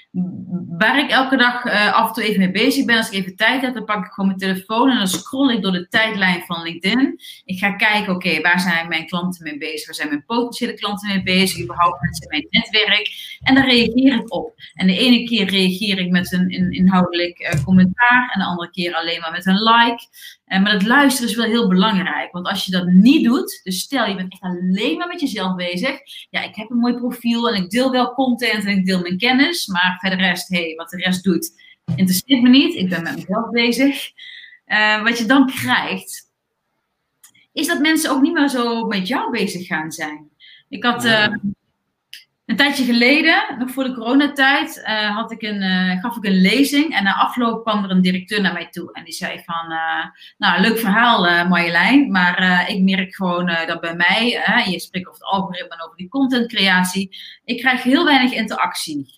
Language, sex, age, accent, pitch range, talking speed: Dutch, female, 30-49, Dutch, 180-245 Hz, 210 wpm